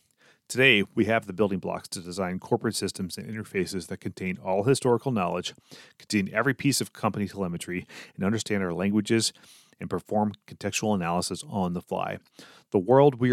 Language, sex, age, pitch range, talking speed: English, male, 30-49, 90-115 Hz, 165 wpm